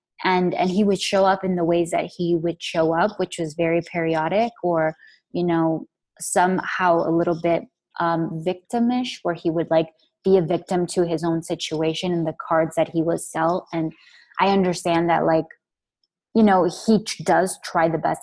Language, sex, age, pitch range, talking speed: English, female, 20-39, 165-190 Hz, 190 wpm